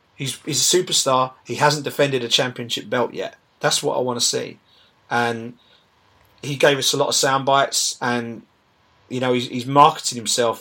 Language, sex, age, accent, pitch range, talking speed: English, male, 30-49, British, 120-180 Hz, 175 wpm